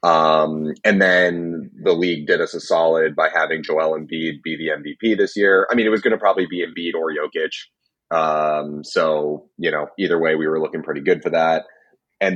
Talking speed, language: 210 wpm, English